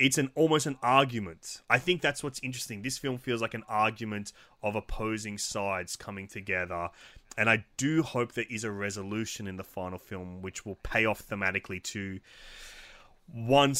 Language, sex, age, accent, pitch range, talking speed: English, male, 20-39, Australian, 100-120 Hz, 175 wpm